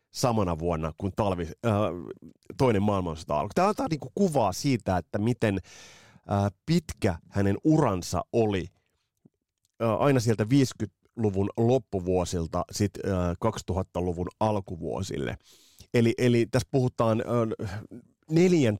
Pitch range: 95-135 Hz